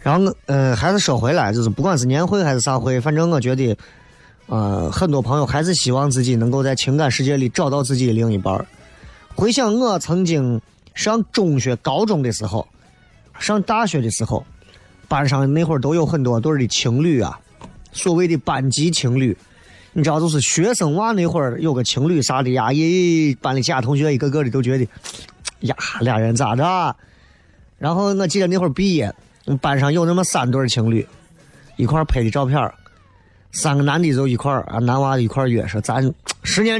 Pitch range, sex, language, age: 115-160 Hz, male, Chinese, 30-49